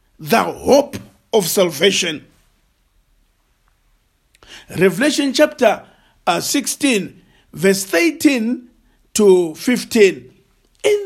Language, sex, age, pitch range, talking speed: English, male, 50-69, 200-320 Hz, 70 wpm